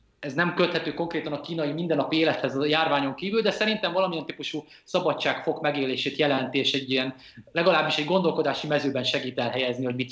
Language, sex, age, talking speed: Hungarian, male, 20-39, 180 wpm